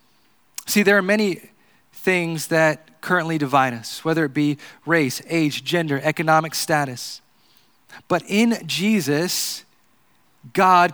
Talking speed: 115 wpm